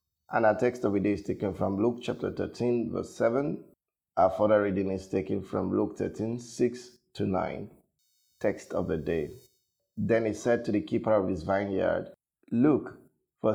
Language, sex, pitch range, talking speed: English, male, 110-175 Hz, 175 wpm